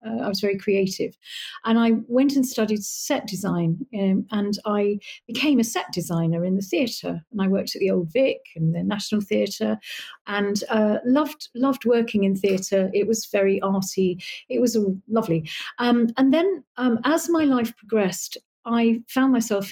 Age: 40-59